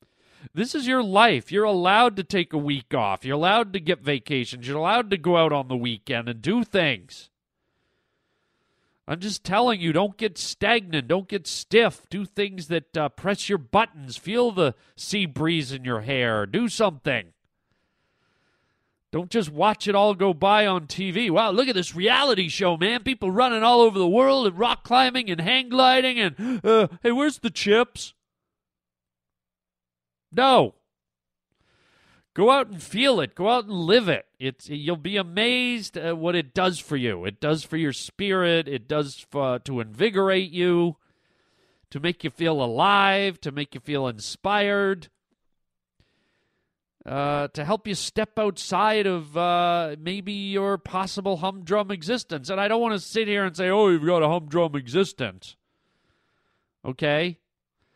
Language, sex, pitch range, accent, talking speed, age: English, male, 145-205 Hz, American, 165 wpm, 40-59